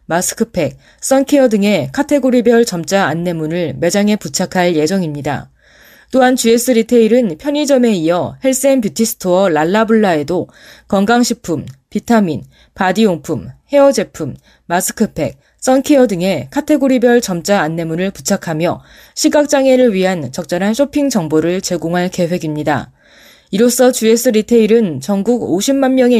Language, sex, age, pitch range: Korean, female, 20-39, 180-245 Hz